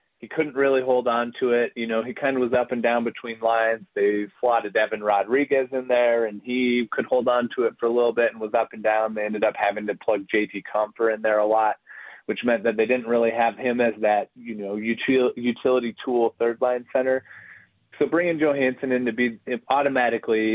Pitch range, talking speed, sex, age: 110-125 Hz, 220 wpm, male, 30-49